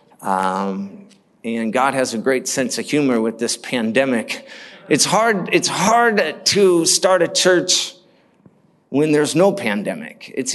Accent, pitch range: American, 125-170 Hz